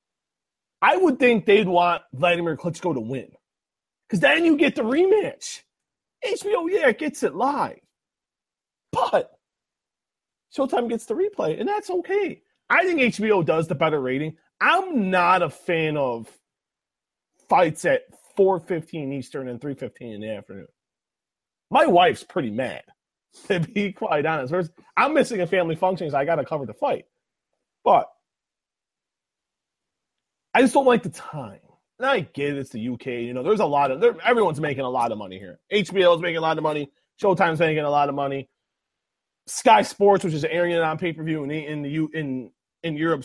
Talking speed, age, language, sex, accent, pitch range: 170 wpm, 30-49, English, male, American, 140-215 Hz